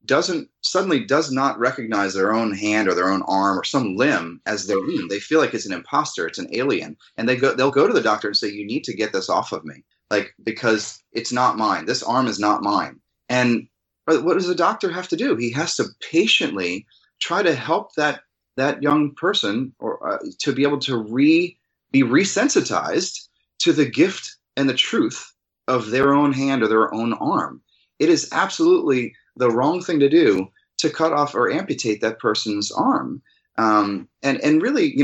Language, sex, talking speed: English, male, 205 wpm